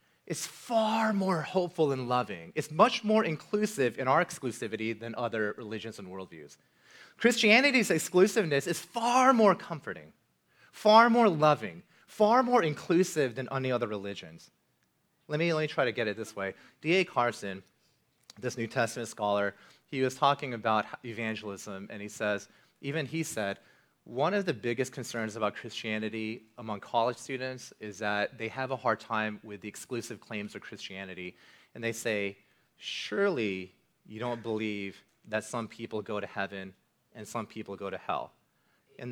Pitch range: 105-170 Hz